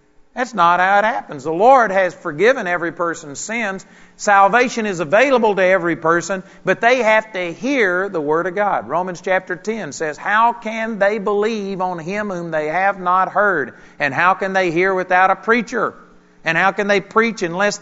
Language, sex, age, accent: English, male, 50-69, American